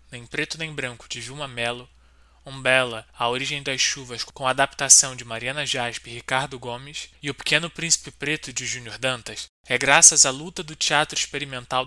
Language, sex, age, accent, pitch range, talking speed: Portuguese, male, 20-39, Brazilian, 125-150 Hz, 180 wpm